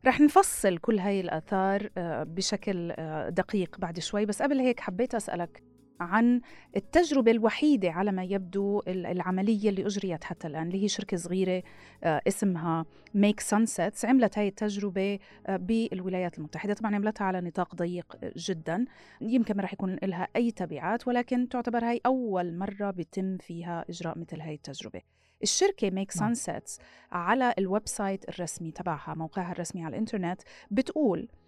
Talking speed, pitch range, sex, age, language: 140 wpm, 180-220 Hz, female, 30-49, Arabic